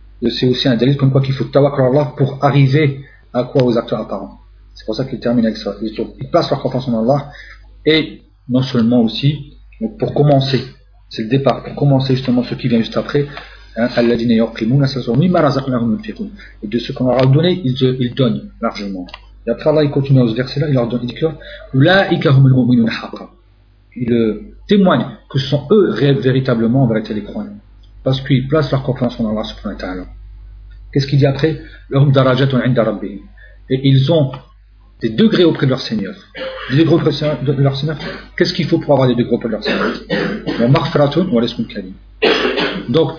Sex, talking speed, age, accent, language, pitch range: male, 190 wpm, 40-59, French, French, 115-145 Hz